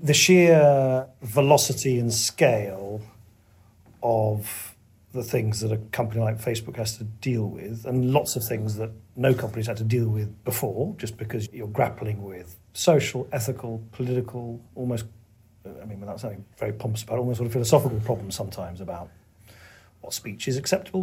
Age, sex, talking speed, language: 40-59, male, 160 wpm, English